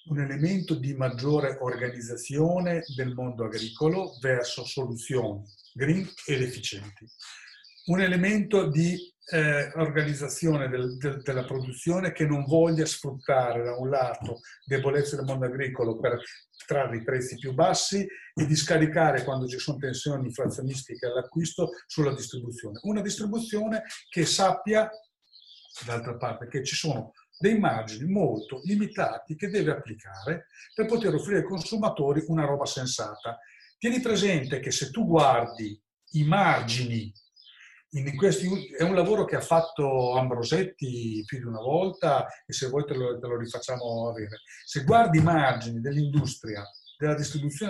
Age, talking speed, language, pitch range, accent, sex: 50-69, 135 wpm, Italian, 125-170 Hz, native, male